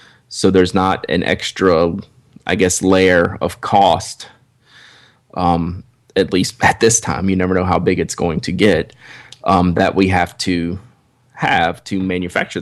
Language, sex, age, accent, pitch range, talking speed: English, male, 20-39, American, 90-105 Hz, 155 wpm